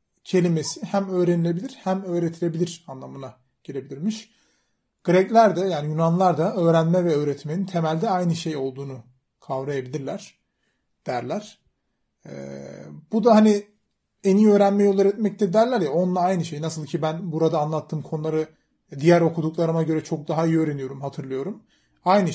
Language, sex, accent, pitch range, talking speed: Turkish, male, native, 155-200 Hz, 135 wpm